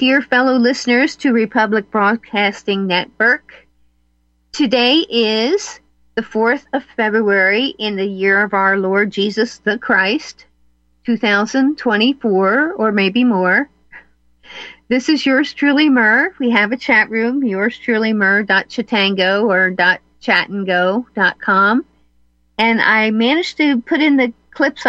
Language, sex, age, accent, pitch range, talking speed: English, female, 50-69, American, 195-245 Hz, 125 wpm